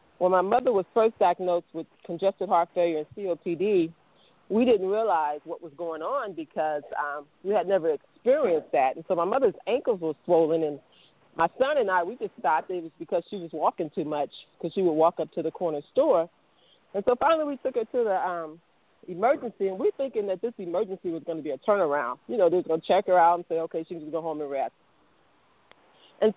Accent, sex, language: American, female, English